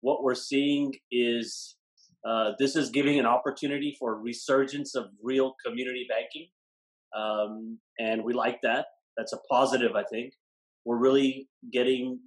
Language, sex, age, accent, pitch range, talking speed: English, male, 30-49, American, 115-135 Hz, 145 wpm